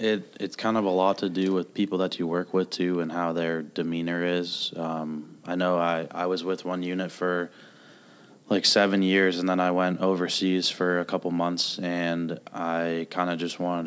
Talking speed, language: 210 wpm, English